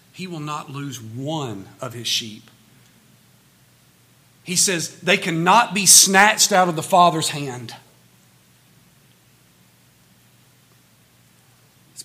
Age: 40-59